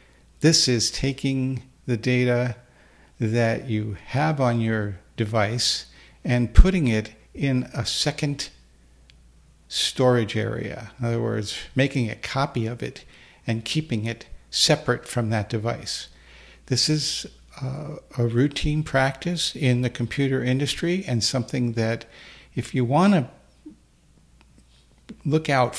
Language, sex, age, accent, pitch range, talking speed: English, male, 50-69, American, 110-130 Hz, 120 wpm